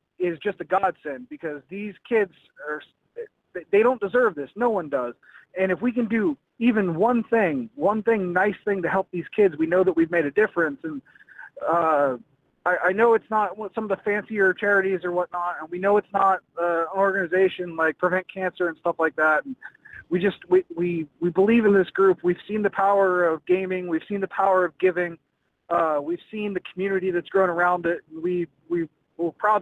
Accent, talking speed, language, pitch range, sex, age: American, 205 wpm, English, 170-210 Hz, male, 30-49